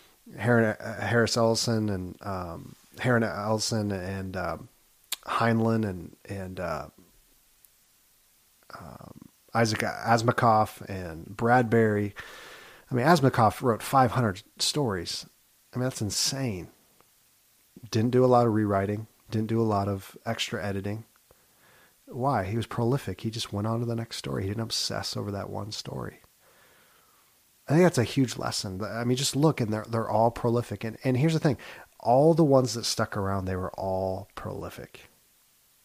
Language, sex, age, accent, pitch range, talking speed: English, male, 30-49, American, 100-115 Hz, 150 wpm